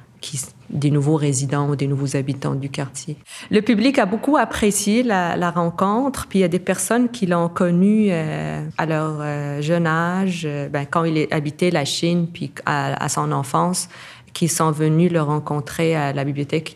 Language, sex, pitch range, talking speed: French, female, 140-165 Hz, 195 wpm